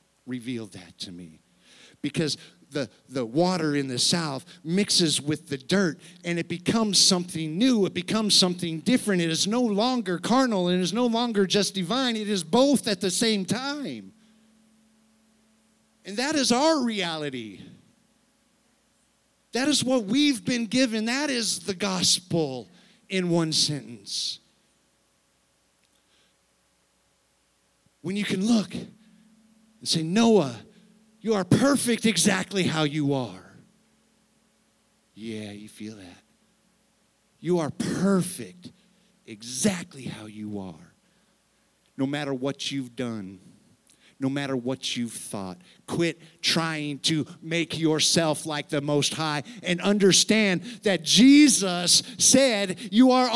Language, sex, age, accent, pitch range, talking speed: English, male, 50-69, American, 155-220 Hz, 125 wpm